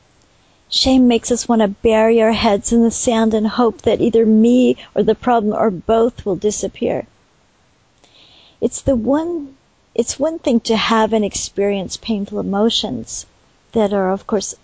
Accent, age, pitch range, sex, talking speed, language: American, 50-69, 205-235 Hz, female, 160 wpm, English